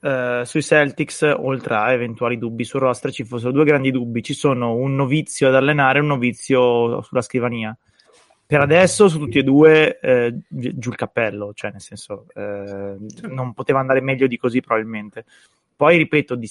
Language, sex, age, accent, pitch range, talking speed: Italian, male, 20-39, native, 120-145 Hz, 180 wpm